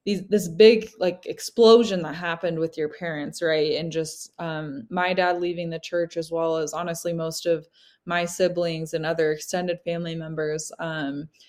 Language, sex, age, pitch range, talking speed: English, female, 20-39, 165-195 Hz, 170 wpm